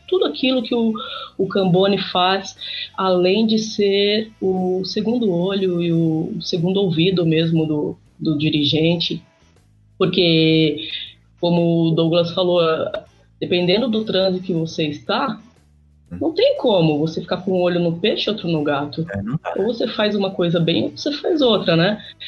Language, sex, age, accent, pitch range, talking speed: Portuguese, female, 20-39, Brazilian, 165-205 Hz, 155 wpm